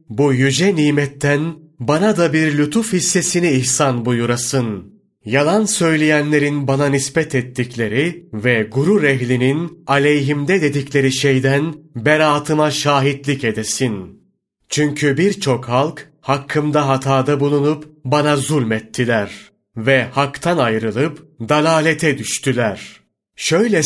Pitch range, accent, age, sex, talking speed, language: 130-155 Hz, native, 30-49, male, 95 wpm, Turkish